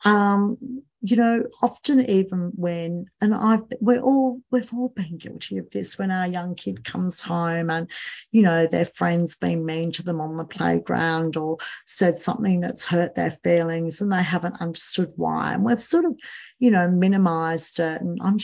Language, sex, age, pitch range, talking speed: English, female, 50-69, 170-240 Hz, 185 wpm